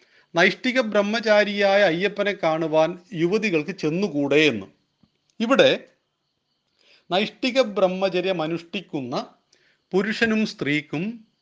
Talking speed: 65 wpm